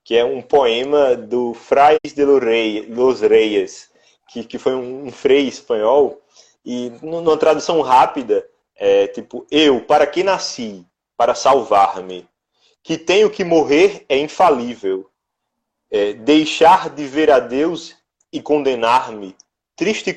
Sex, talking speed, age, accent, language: male, 130 wpm, 20-39, Brazilian, Portuguese